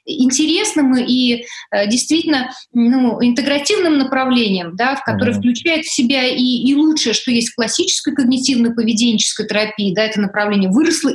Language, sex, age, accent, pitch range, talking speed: Russian, female, 20-39, native, 225-270 Hz, 140 wpm